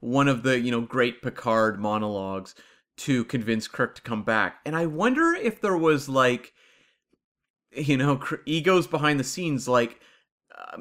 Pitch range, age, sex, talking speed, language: 115-155 Hz, 30-49, male, 160 wpm, English